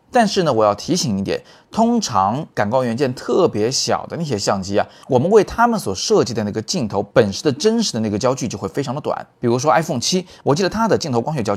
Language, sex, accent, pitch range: Chinese, male, native, 105-170 Hz